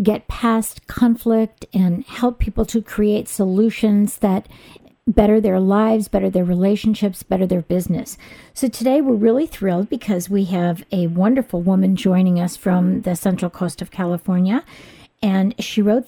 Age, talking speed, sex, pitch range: 50-69, 155 wpm, female, 195-245 Hz